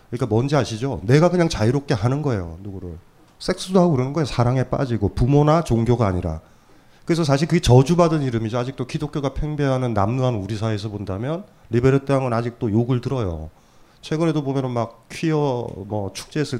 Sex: male